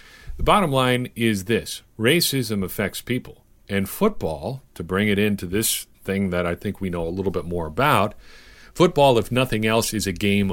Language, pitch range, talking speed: English, 95-125 Hz, 190 wpm